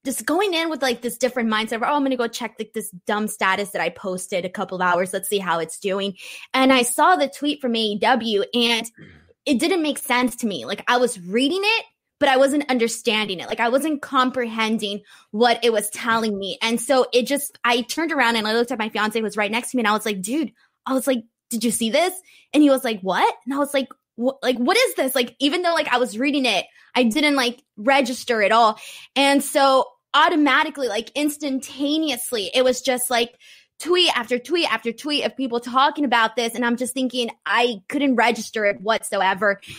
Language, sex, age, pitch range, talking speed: English, female, 20-39, 225-275 Hz, 225 wpm